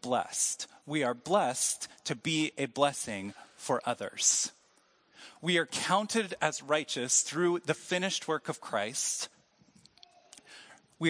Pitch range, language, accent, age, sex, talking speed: 150-195 Hz, English, American, 40-59, male, 120 wpm